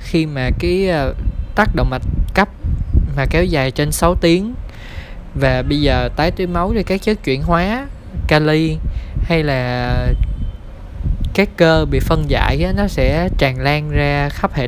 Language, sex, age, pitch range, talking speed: Vietnamese, male, 20-39, 130-160 Hz, 165 wpm